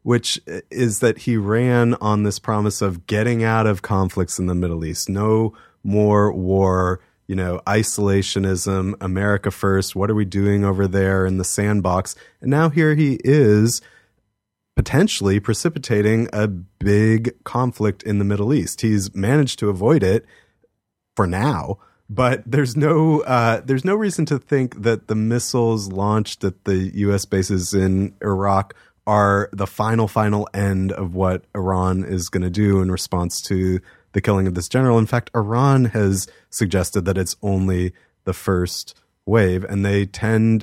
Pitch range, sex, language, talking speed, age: 95-110 Hz, male, English, 160 wpm, 30-49